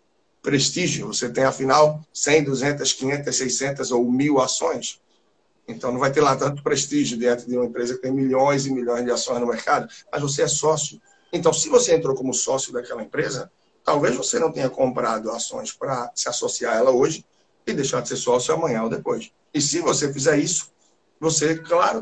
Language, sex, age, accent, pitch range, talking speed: Portuguese, male, 60-79, Brazilian, 125-155 Hz, 190 wpm